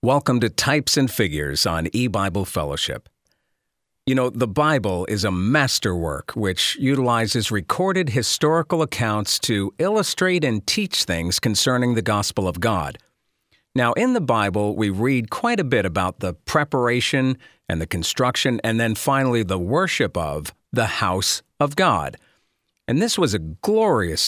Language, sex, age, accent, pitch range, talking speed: English, male, 50-69, American, 100-135 Hz, 150 wpm